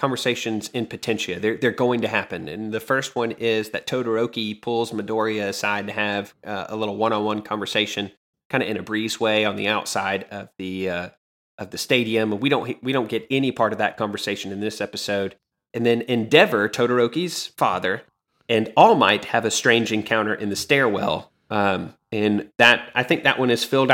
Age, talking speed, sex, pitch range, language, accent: 30-49, 185 wpm, male, 105-120 Hz, English, American